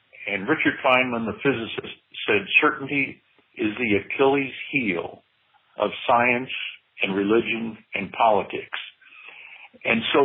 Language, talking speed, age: English, 110 wpm, 60-79